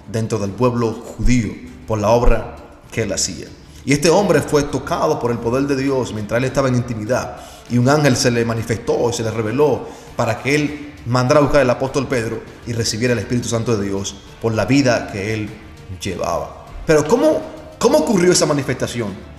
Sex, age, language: male, 30-49, Spanish